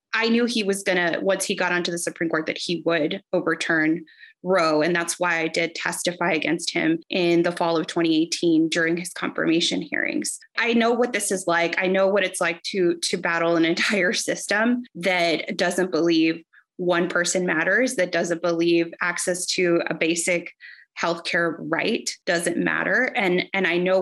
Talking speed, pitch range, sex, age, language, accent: 180 wpm, 170-195 Hz, female, 20-39, English, American